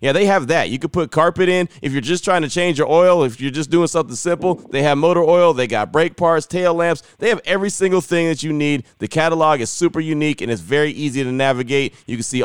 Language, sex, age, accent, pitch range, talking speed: English, male, 30-49, American, 120-150 Hz, 265 wpm